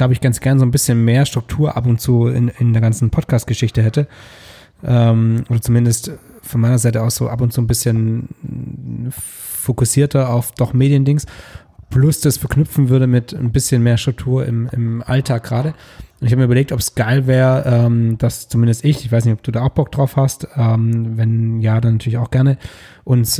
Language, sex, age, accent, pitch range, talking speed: German, male, 20-39, German, 115-135 Hz, 205 wpm